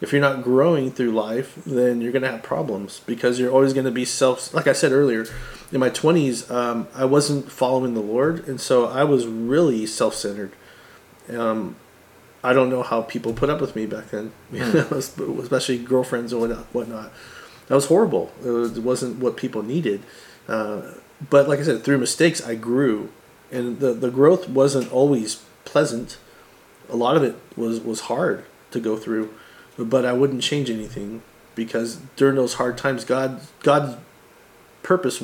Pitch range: 115-130 Hz